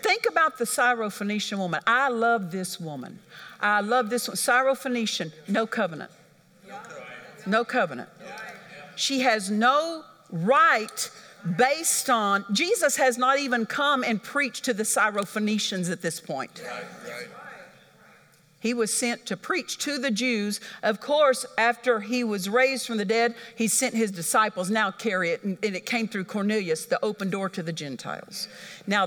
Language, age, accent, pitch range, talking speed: English, 50-69, American, 200-255 Hz, 150 wpm